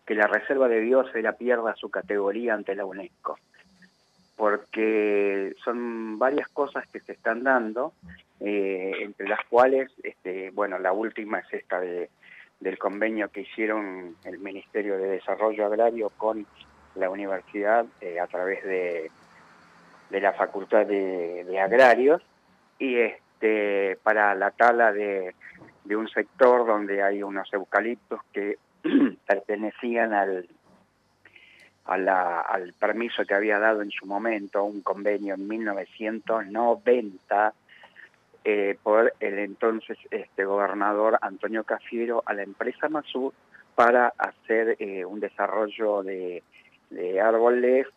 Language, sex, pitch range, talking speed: Spanish, male, 100-115 Hz, 130 wpm